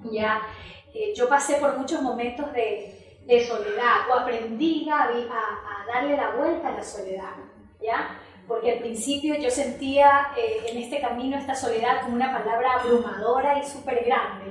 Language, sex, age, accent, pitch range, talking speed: Spanish, female, 20-39, American, 230-275 Hz, 165 wpm